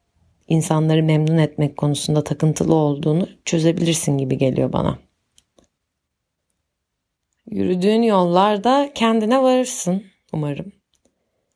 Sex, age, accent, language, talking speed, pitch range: female, 30-49, native, Turkish, 80 wpm, 145-185 Hz